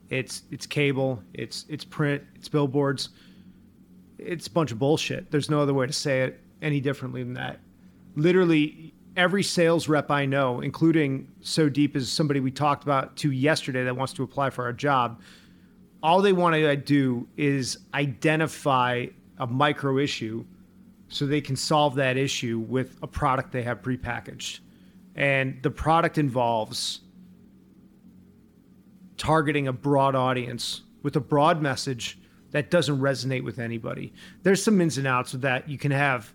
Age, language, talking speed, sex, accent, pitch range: 30-49, English, 160 wpm, male, American, 130-155 Hz